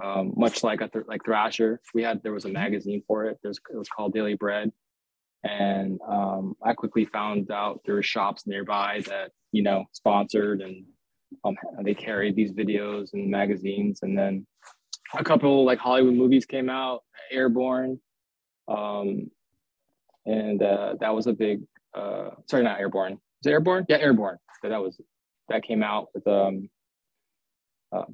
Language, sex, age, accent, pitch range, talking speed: English, male, 20-39, American, 100-125 Hz, 165 wpm